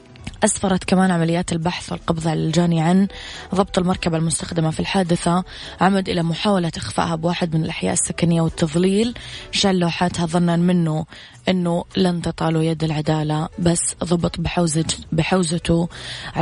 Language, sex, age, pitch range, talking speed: English, female, 20-39, 165-180 Hz, 125 wpm